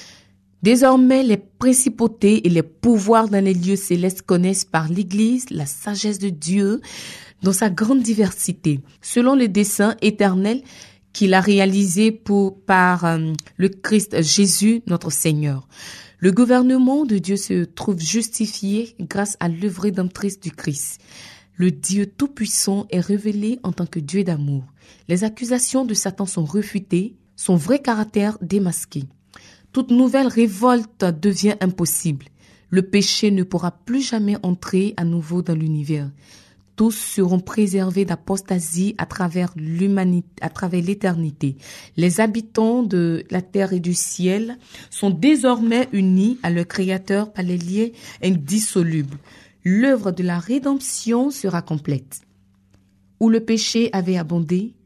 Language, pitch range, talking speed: French, 175-220 Hz, 135 wpm